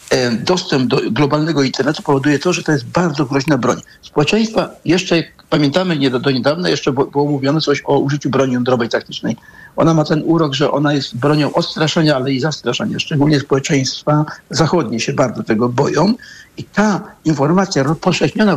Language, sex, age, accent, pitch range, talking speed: Polish, male, 60-79, native, 135-170 Hz, 170 wpm